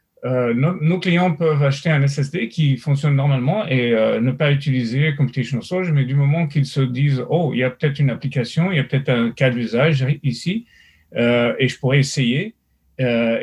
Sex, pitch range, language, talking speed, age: male, 130-150 Hz, French, 195 wpm, 40-59